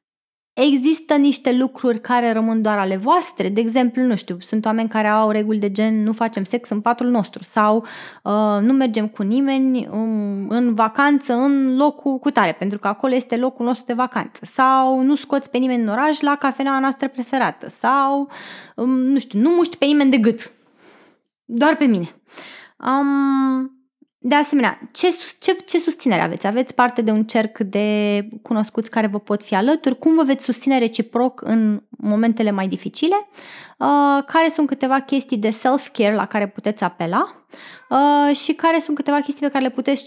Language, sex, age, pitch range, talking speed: Romanian, female, 20-39, 225-285 Hz, 175 wpm